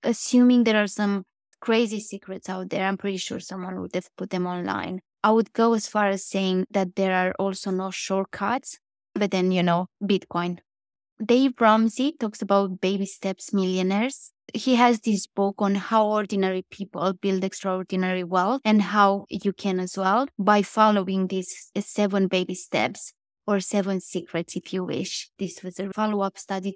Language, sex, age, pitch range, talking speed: English, female, 20-39, 185-210 Hz, 170 wpm